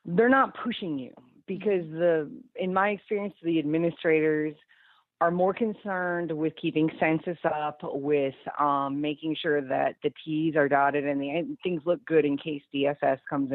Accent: American